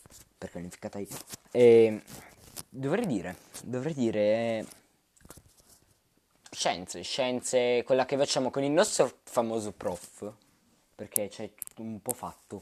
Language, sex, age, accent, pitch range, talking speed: Italian, male, 20-39, native, 95-120 Hz, 120 wpm